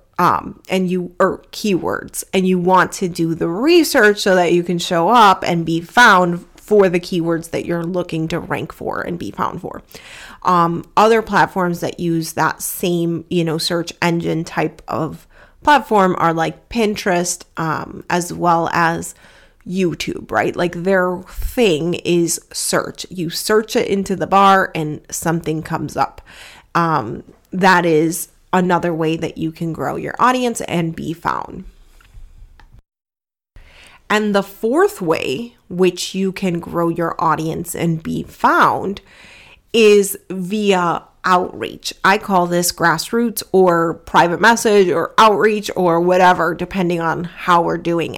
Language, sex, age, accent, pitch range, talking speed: English, female, 30-49, American, 165-195 Hz, 145 wpm